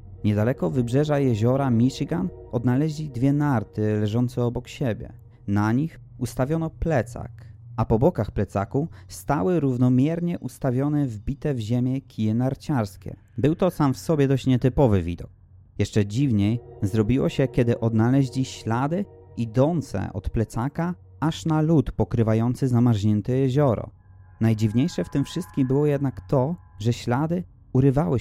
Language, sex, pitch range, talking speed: Polish, male, 105-140 Hz, 130 wpm